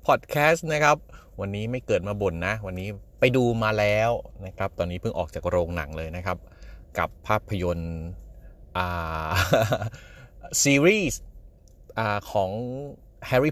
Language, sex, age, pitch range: Thai, male, 30-49, 90-120 Hz